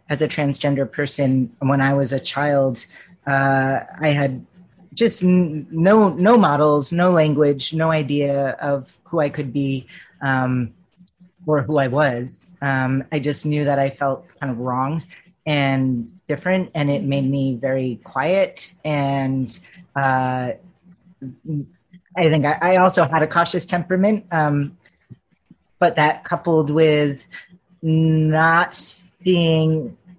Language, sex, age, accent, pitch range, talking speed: English, female, 30-49, American, 140-180 Hz, 135 wpm